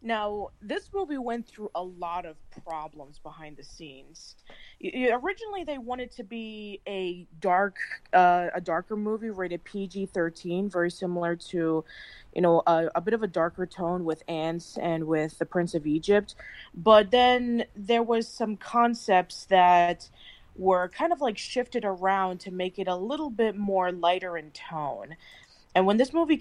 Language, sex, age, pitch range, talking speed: English, female, 20-39, 170-215 Hz, 170 wpm